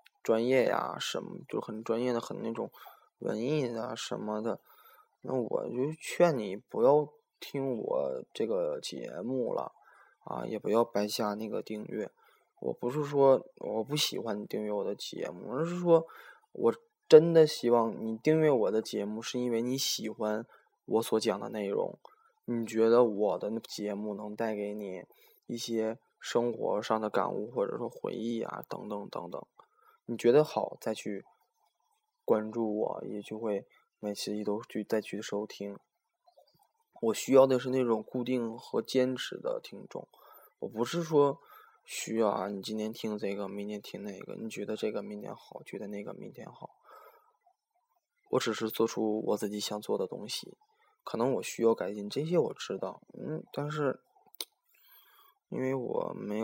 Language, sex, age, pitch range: Chinese, male, 10-29, 105-150 Hz